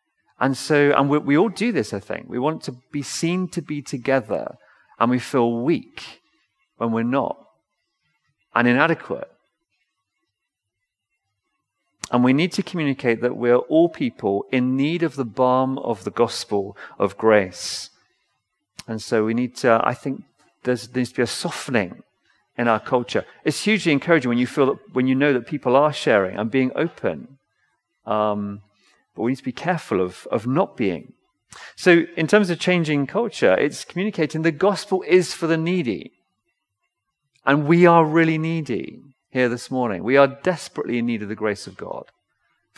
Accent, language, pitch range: British, English, 120-165 Hz